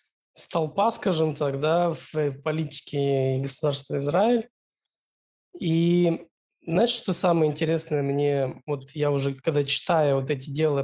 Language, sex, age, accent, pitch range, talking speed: Russian, male, 20-39, native, 145-195 Hz, 120 wpm